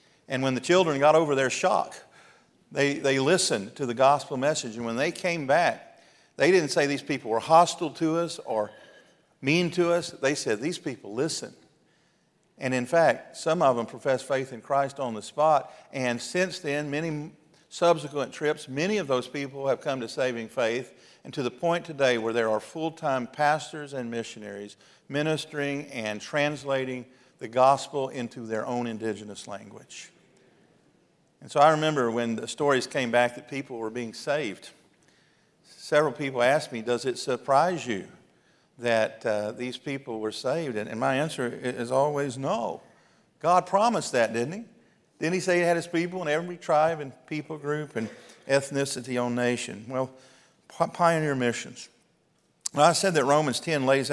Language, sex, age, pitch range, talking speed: English, male, 50-69, 120-155 Hz, 170 wpm